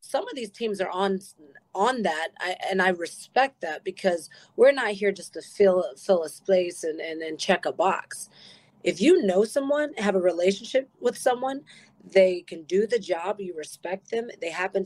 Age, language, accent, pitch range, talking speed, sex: 30-49, English, American, 180-215 Hz, 195 wpm, female